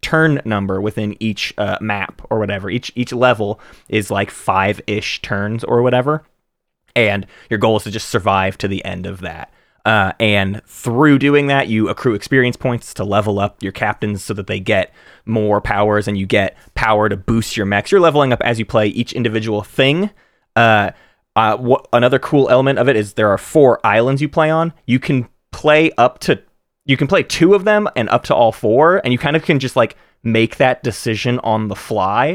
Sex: male